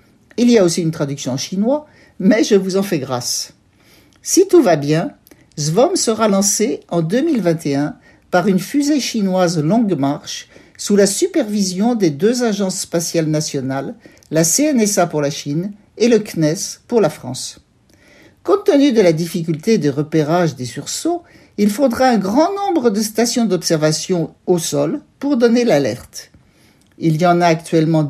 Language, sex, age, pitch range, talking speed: French, male, 60-79, 165-230 Hz, 160 wpm